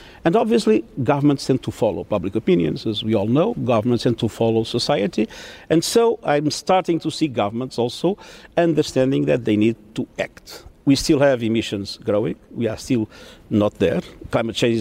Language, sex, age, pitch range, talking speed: English, male, 50-69, 115-150 Hz, 175 wpm